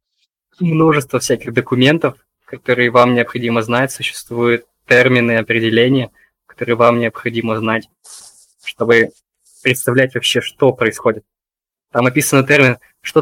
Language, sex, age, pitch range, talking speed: Russian, male, 20-39, 115-135 Hz, 105 wpm